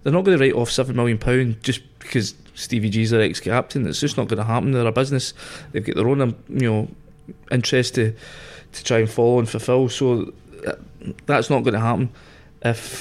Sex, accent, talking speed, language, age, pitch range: male, British, 205 wpm, English, 20-39, 115-135 Hz